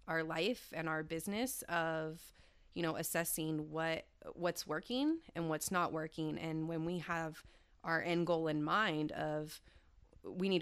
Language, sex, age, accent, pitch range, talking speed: English, female, 30-49, American, 155-175 Hz, 160 wpm